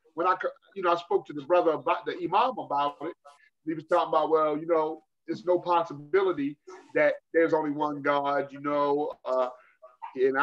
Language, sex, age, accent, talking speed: English, male, 30-49, American, 190 wpm